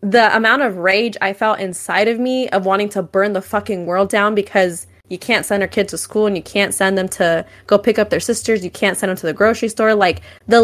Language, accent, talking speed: English, American, 260 wpm